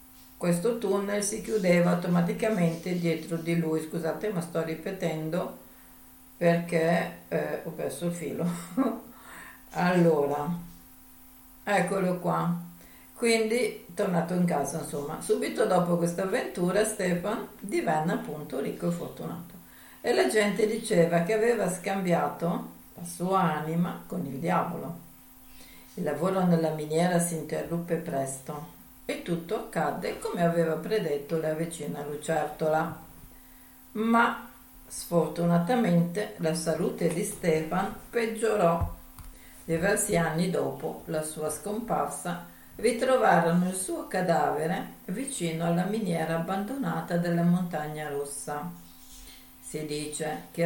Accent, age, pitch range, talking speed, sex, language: native, 50-69, 150-190 Hz, 110 wpm, female, Italian